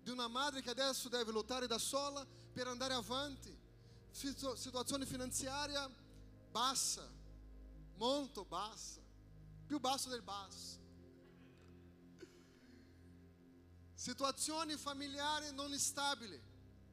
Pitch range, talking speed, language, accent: 225-315 Hz, 90 wpm, Italian, Brazilian